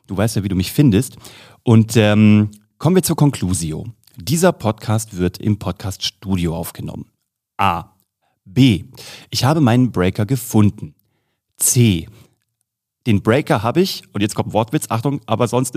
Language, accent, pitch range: German, German, 100-125 Hz